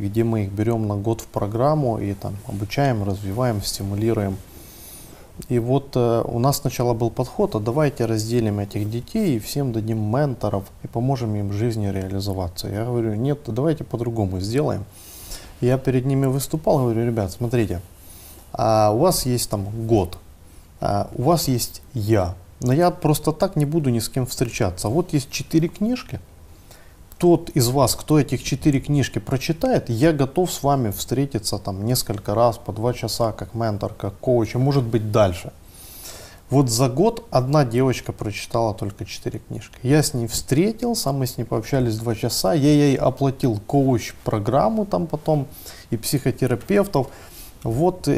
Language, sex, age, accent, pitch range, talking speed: Ukrainian, male, 30-49, native, 105-140 Hz, 160 wpm